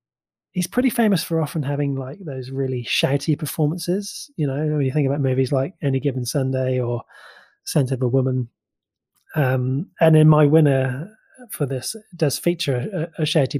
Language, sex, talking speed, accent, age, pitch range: English, male, 170 wpm, British, 20-39, 130-155 Hz